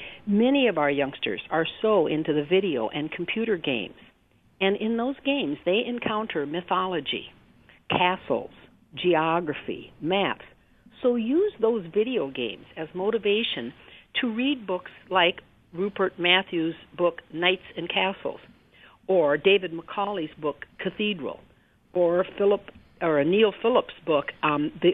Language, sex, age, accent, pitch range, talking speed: English, female, 60-79, American, 165-220 Hz, 125 wpm